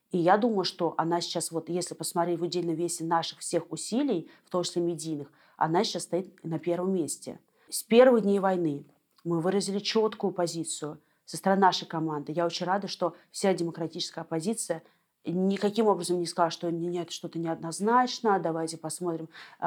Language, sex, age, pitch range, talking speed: Russian, female, 30-49, 165-195 Hz, 165 wpm